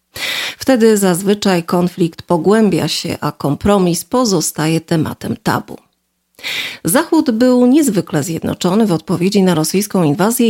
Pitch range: 165-215 Hz